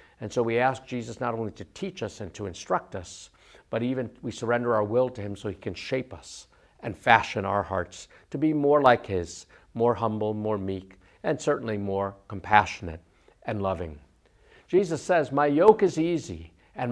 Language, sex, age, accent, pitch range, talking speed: English, male, 50-69, American, 100-135 Hz, 190 wpm